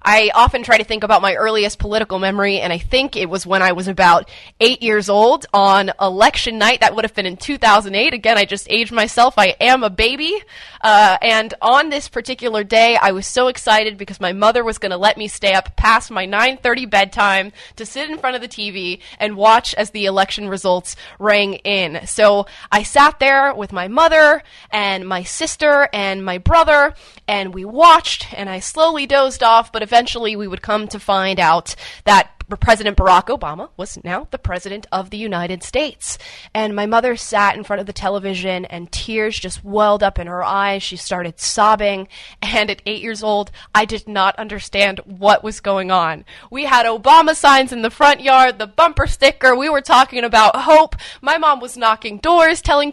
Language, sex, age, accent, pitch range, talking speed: English, female, 20-39, American, 200-260 Hz, 200 wpm